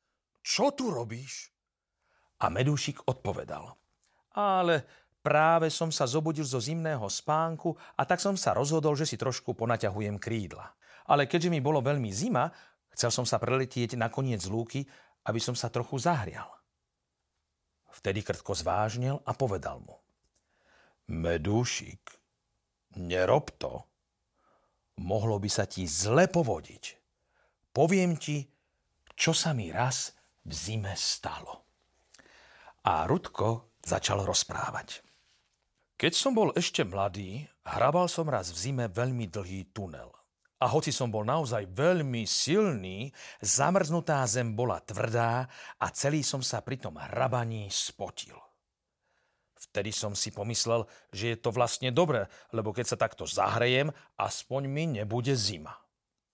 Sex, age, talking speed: male, 50-69, 130 wpm